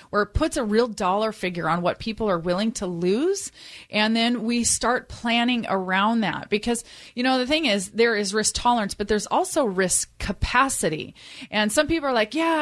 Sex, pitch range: female, 190-255 Hz